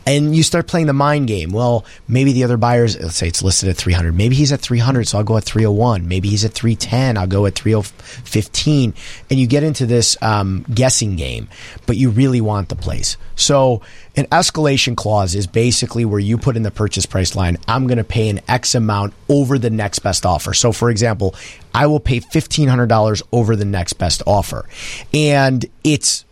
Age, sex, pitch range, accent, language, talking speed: 30-49, male, 100-130 Hz, American, English, 205 wpm